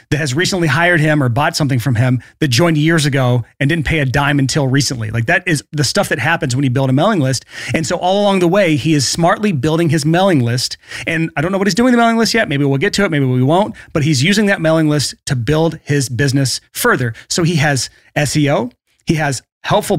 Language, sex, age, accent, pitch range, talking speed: English, male, 30-49, American, 140-170 Hz, 250 wpm